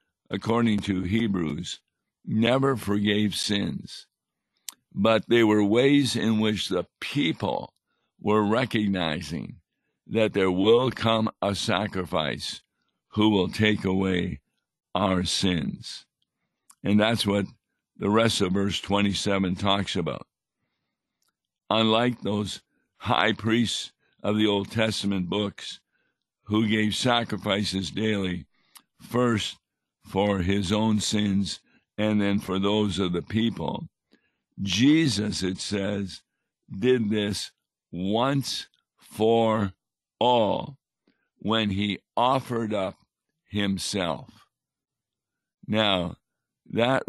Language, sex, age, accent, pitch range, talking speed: English, male, 60-79, American, 95-110 Hz, 100 wpm